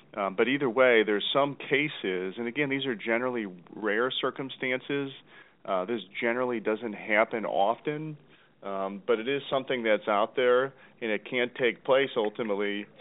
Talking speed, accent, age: 155 wpm, American, 40-59